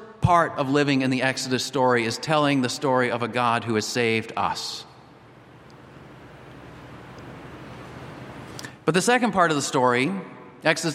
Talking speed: 140 wpm